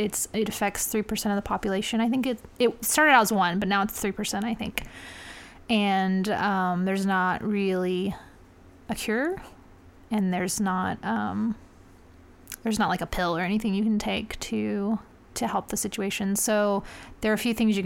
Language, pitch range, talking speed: English, 195-225 Hz, 190 wpm